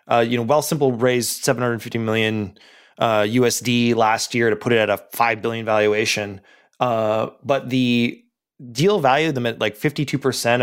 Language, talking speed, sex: English, 165 wpm, male